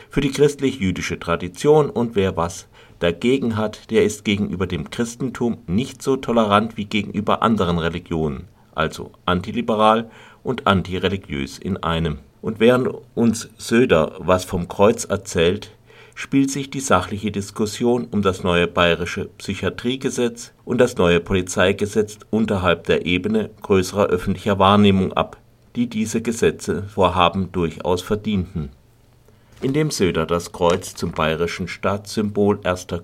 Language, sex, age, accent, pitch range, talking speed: German, male, 50-69, German, 90-115 Hz, 125 wpm